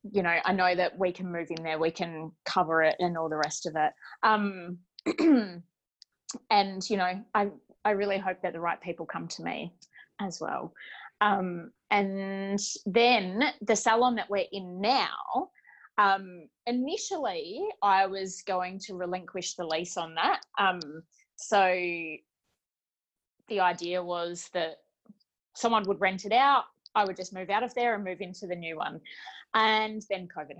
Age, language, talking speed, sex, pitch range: 20-39, English, 165 wpm, female, 180-225 Hz